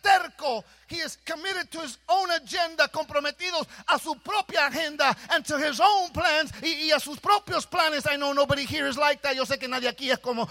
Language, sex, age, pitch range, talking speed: English, male, 40-59, 265-310 Hz, 210 wpm